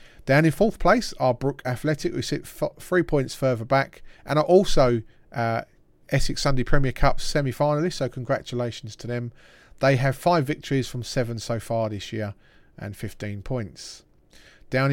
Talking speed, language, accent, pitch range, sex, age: 160 wpm, English, British, 115-145 Hz, male, 40-59